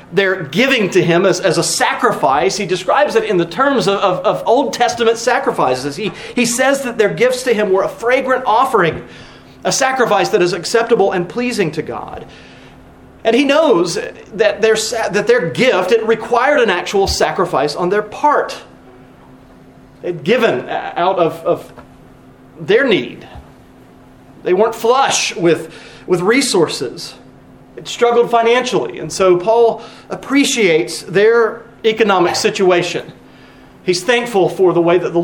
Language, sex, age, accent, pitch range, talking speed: English, male, 30-49, American, 175-235 Hz, 150 wpm